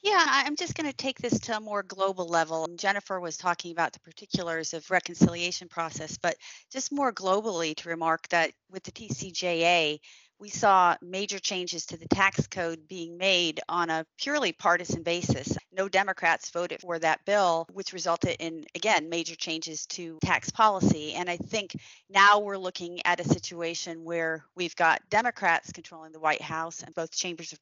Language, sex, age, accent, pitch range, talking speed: English, female, 40-59, American, 165-195 Hz, 180 wpm